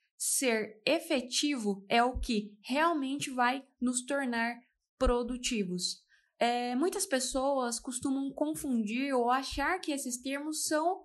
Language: Portuguese